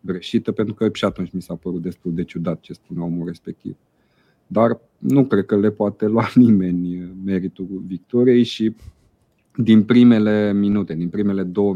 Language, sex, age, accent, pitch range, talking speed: Romanian, male, 30-49, native, 90-105 Hz, 165 wpm